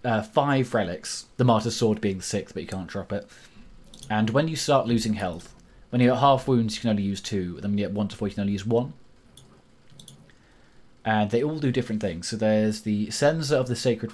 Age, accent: 20-39, British